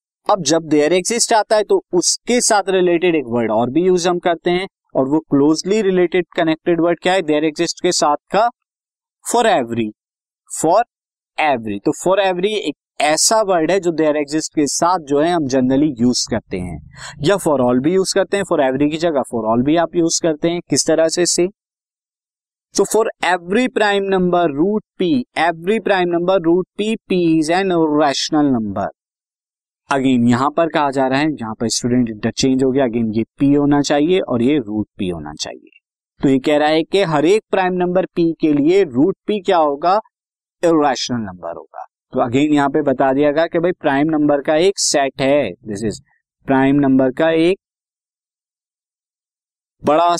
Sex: male